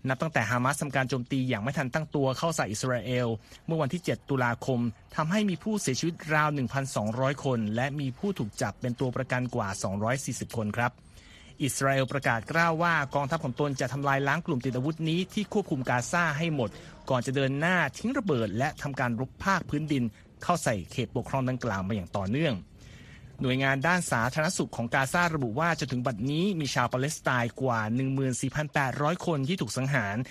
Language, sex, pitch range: Thai, male, 125-160 Hz